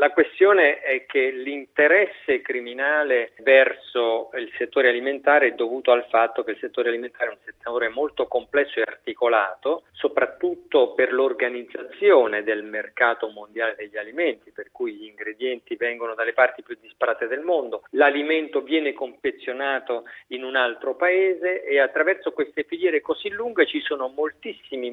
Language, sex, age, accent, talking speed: Italian, male, 40-59, native, 145 wpm